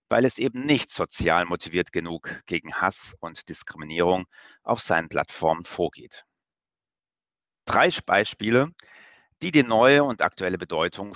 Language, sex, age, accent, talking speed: German, male, 30-49, German, 125 wpm